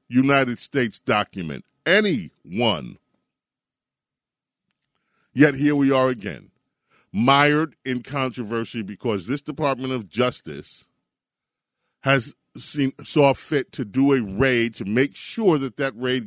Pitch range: 115-140 Hz